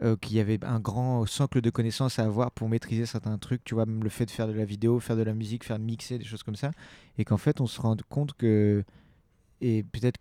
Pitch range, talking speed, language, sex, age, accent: 110-130 Hz, 270 wpm, French, male, 30-49, French